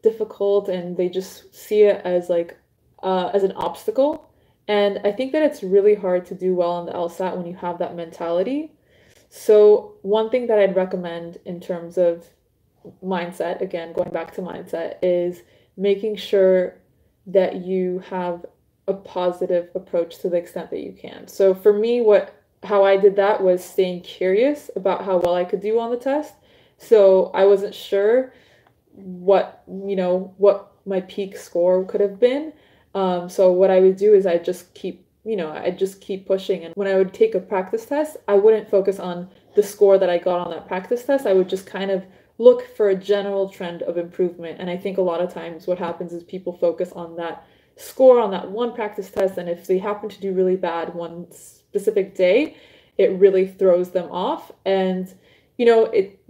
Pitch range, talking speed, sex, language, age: 180-205 Hz, 195 wpm, female, English, 20-39